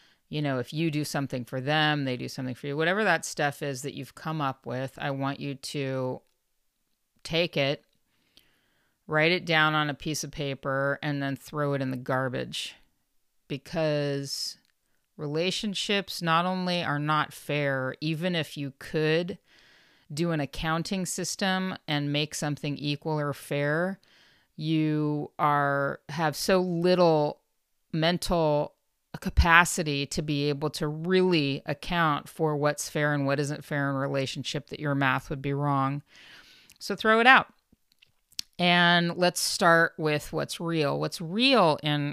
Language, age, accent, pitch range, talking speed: English, 40-59, American, 140-165 Hz, 150 wpm